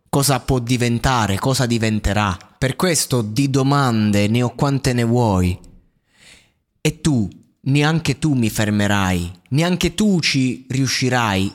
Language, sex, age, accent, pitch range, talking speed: Italian, male, 20-39, native, 120-155 Hz, 125 wpm